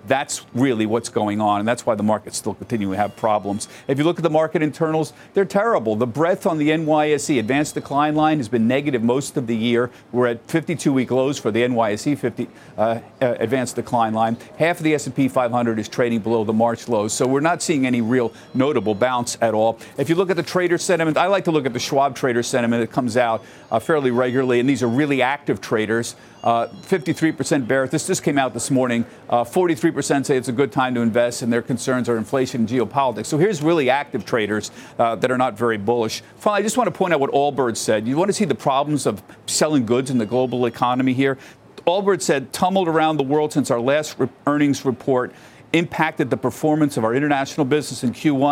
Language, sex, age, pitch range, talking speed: English, male, 50-69, 115-150 Hz, 225 wpm